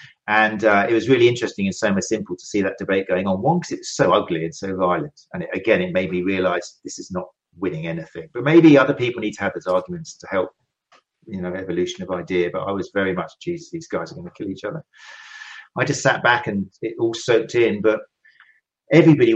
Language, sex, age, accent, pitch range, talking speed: English, male, 40-59, British, 90-120 Hz, 235 wpm